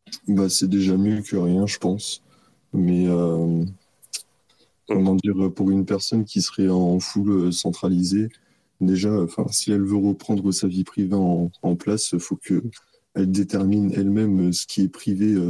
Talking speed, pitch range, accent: 155 wpm, 90-100 Hz, French